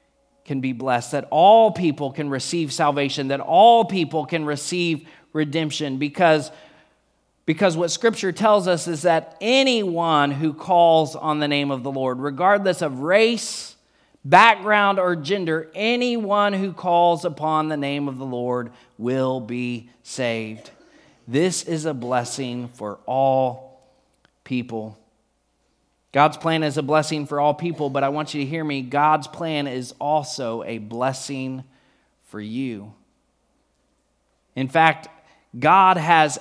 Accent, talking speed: American, 140 wpm